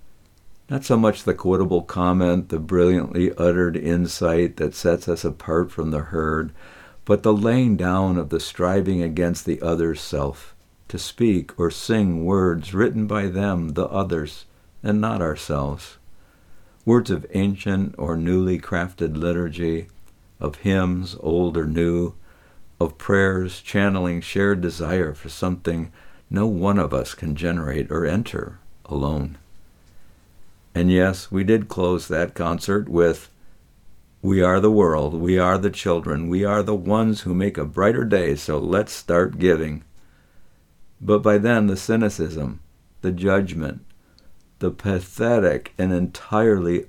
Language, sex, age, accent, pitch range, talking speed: English, male, 60-79, American, 80-100 Hz, 140 wpm